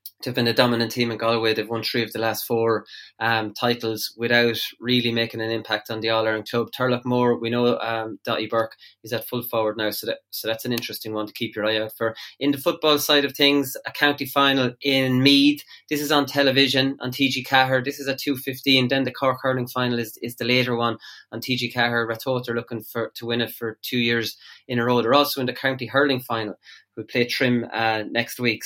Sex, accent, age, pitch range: male, Irish, 20-39, 115-130 Hz